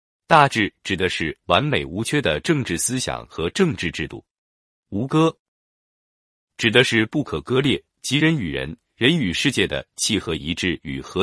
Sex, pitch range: male, 80-130 Hz